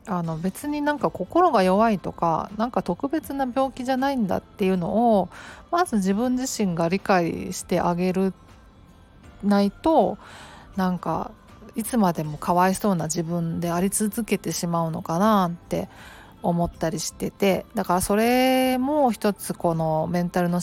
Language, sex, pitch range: Japanese, female, 170-220 Hz